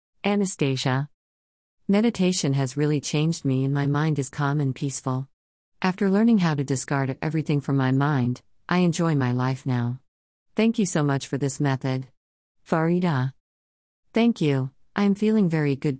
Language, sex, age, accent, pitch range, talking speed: English, female, 40-59, American, 130-160 Hz, 160 wpm